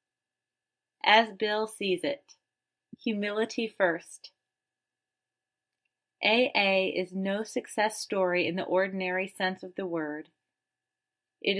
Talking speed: 100 wpm